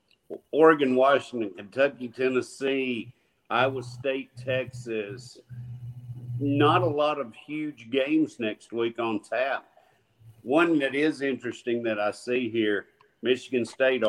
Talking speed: 115 wpm